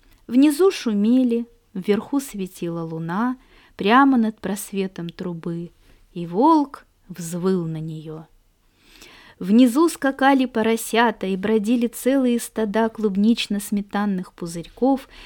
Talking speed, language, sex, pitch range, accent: 90 wpm, Russian, female, 185-250 Hz, native